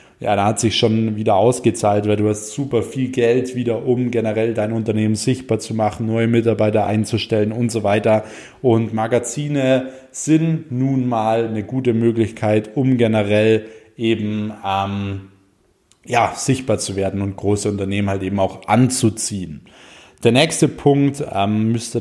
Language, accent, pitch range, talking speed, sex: German, German, 110-130 Hz, 150 wpm, male